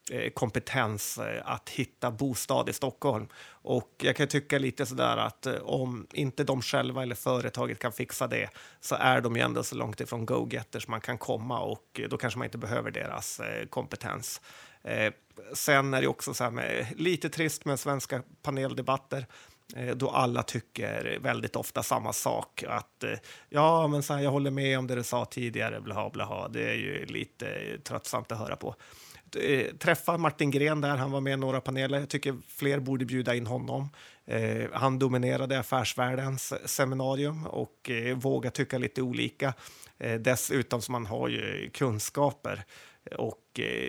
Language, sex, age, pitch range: Swedish, male, 30-49, 125-140 Hz